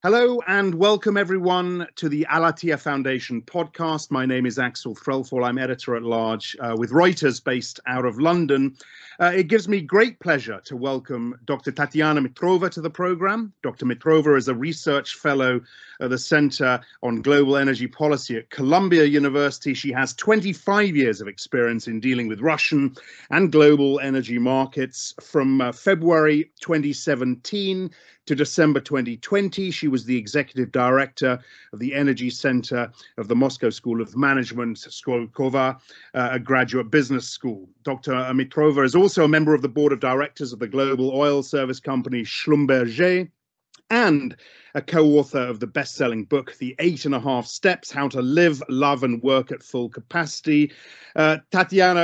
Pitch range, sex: 125-155 Hz, male